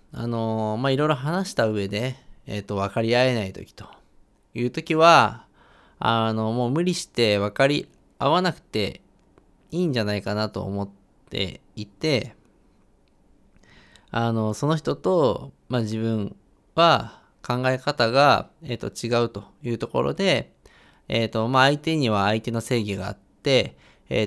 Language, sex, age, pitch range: Japanese, male, 20-39, 105-135 Hz